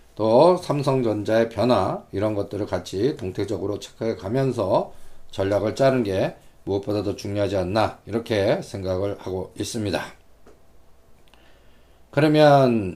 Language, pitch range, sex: Korean, 100-135 Hz, male